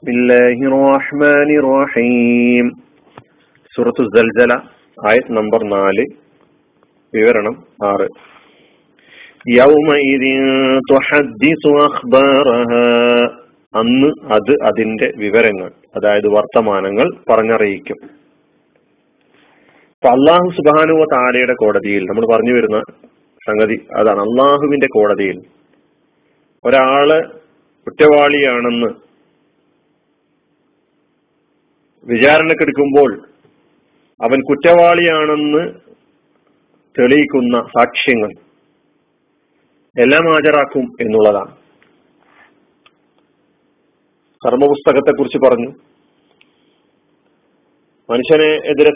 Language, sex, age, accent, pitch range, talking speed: Malayalam, male, 40-59, native, 120-150 Hz, 40 wpm